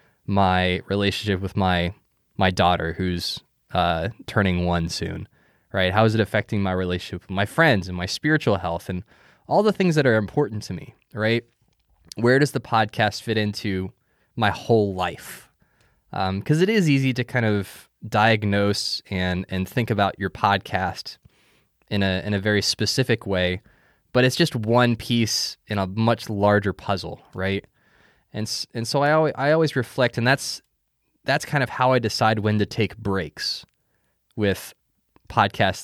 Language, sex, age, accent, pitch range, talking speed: English, male, 20-39, American, 95-125 Hz, 165 wpm